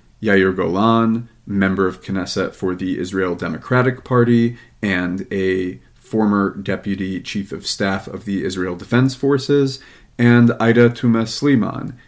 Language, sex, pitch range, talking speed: English, male, 95-115 Hz, 130 wpm